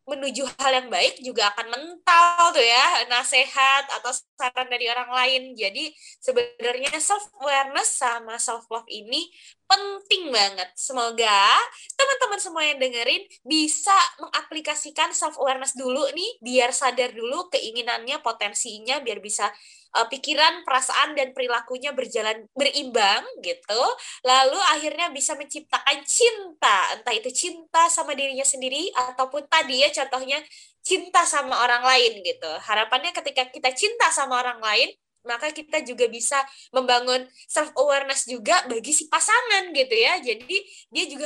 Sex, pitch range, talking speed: female, 245-330 Hz, 130 wpm